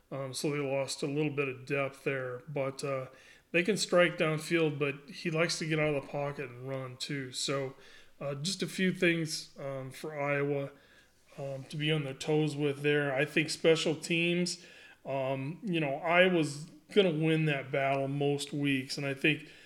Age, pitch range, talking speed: 30-49, 135-170 Hz, 190 wpm